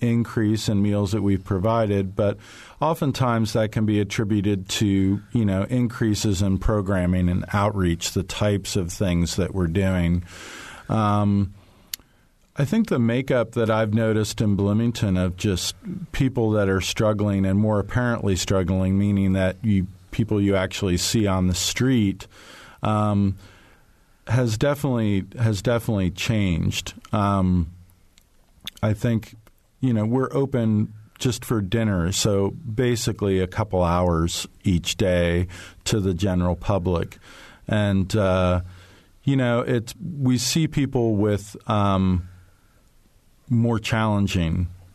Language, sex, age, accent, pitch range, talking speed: English, male, 40-59, American, 95-110 Hz, 130 wpm